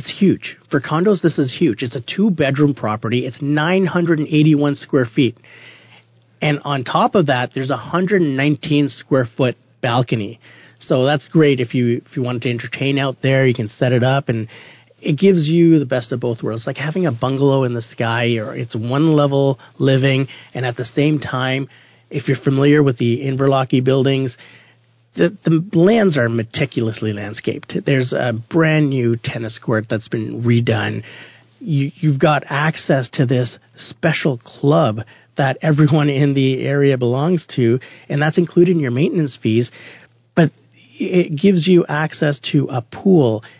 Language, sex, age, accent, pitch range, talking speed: English, male, 30-49, American, 120-150 Hz, 170 wpm